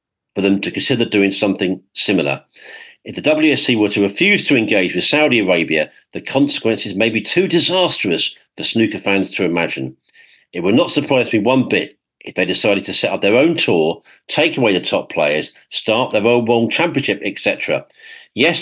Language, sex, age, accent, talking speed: English, male, 50-69, British, 185 wpm